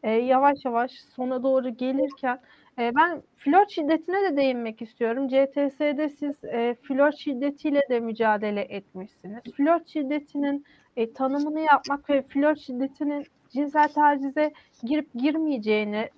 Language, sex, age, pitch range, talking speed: Turkish, female, 40-59, 245-300 Hz, 110 wpm